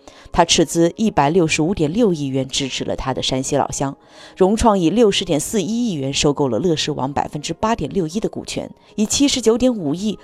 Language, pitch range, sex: Chinese, 155-230 Hz, female